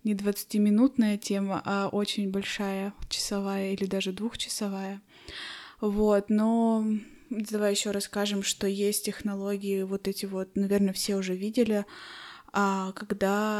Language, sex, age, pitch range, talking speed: Russian, female, 20-39, 195-215 Hz, 115 wpm